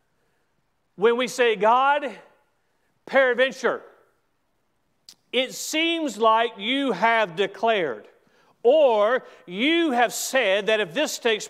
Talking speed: 100 wpm